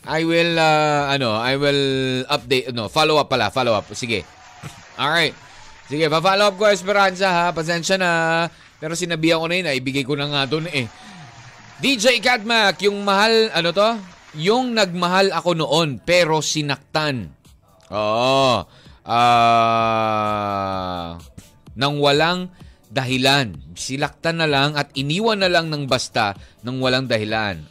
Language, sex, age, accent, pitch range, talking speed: Filipino, male, 20-39, native, 125-165 Hz, 130 wpm